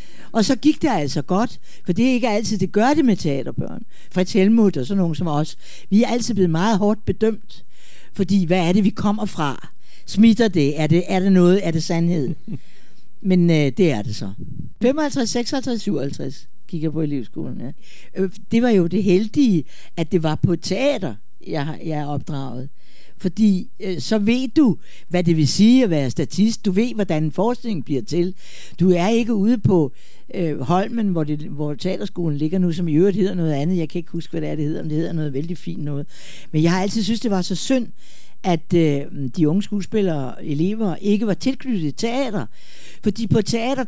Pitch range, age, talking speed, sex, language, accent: 155-210 Hz, 60-79, 210 wpm, female, Danish, native